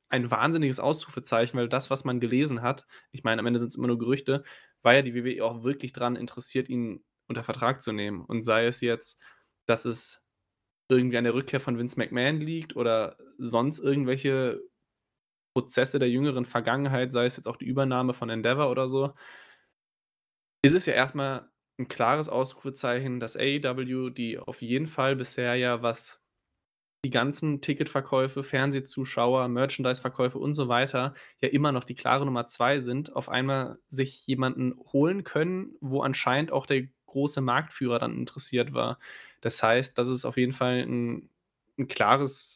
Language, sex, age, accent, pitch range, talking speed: German, male, 10-29, German, 120-135 Hz, 170 wpm